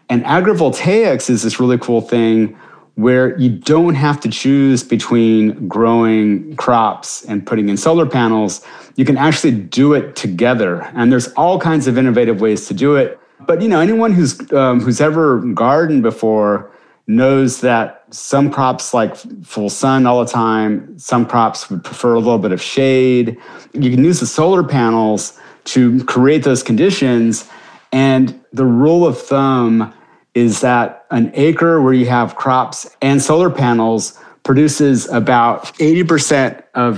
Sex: male